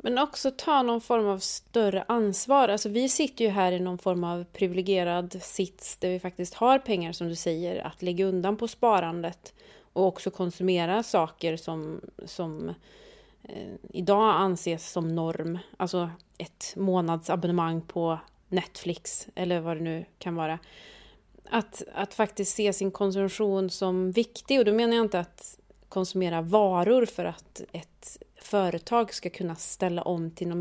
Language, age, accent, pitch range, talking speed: Swedish, 30-49, native, 175-215 Hz, 155 wpm